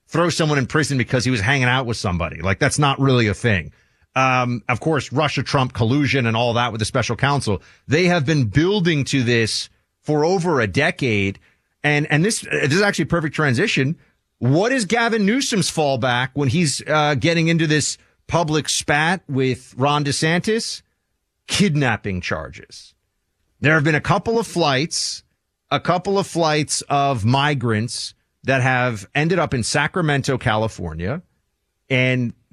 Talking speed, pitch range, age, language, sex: 160 wpm, 115-155 Hz, 30-49, English, male